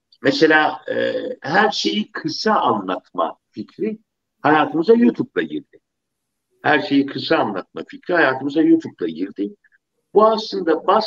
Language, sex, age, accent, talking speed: Turkish, male, 60-79, native, 110 wpm